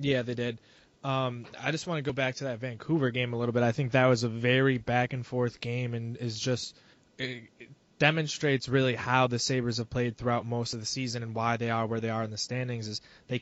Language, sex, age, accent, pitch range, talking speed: English, male, 20-39, American, 115-130 Hz, 250 wpm